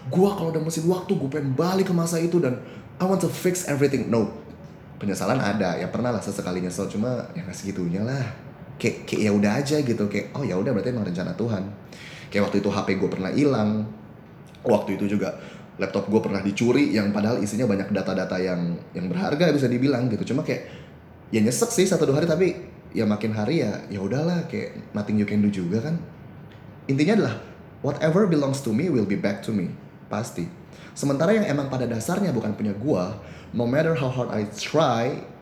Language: Indonesian